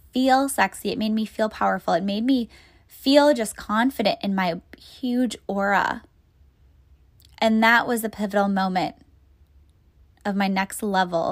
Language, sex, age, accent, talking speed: English, female, 10-29, American, 145 wpm